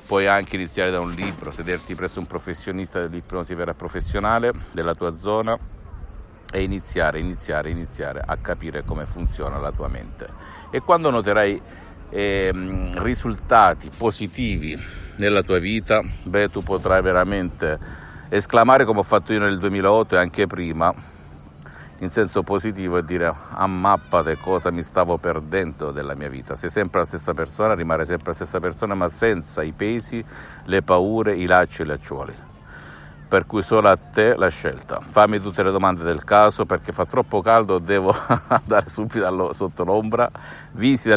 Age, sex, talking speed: 50-69, male, 160 wpm